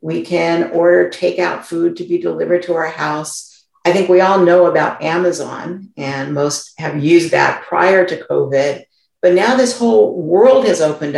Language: English